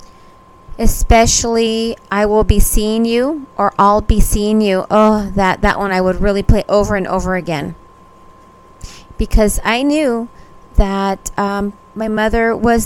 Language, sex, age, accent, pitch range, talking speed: English, female, 30-49, American, 210-245 Hz, 145 wpm